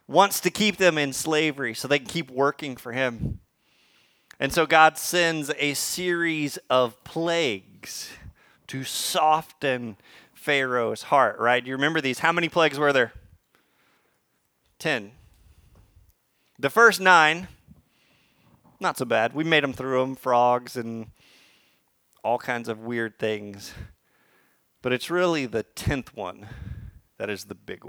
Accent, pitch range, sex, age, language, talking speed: American, 120-155 Hz, male, 30-49, English, 140 wpm